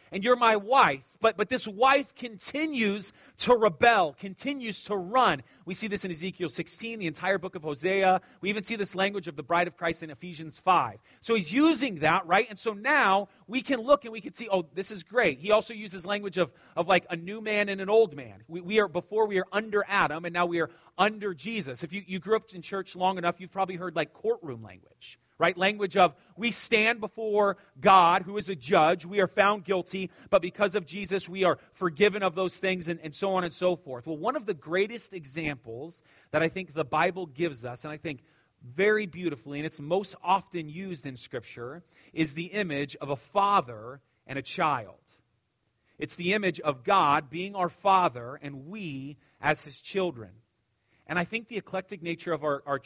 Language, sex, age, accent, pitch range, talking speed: English, male, 30-49, American, 155-205 Hz, 215 wpm